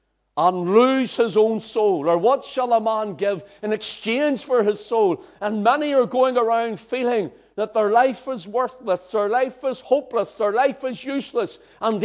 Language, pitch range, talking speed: English, 140-230 Hz, 180 wpm